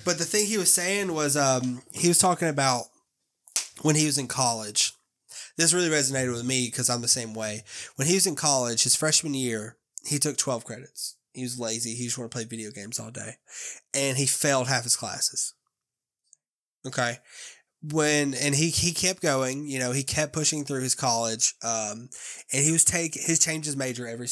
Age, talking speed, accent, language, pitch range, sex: 20-39, 200 wpm, American, English, 120-150 Hz, male